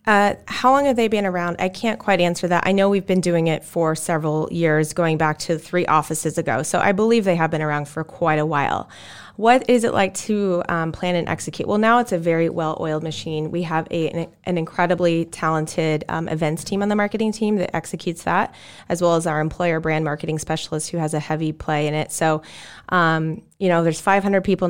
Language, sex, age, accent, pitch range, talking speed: English, female, 30-49, American, 155-185 Hz, 225 wpm